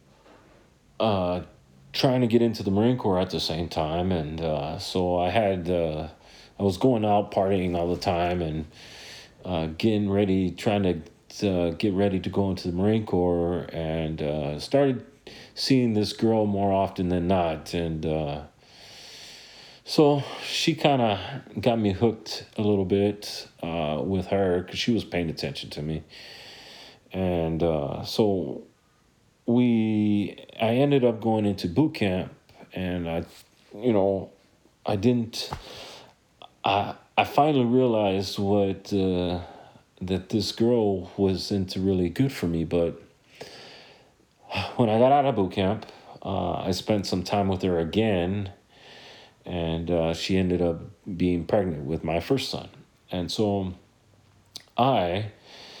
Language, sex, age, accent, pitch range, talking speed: English, male, 40-59, American, 85-110 Hz, 145 wpm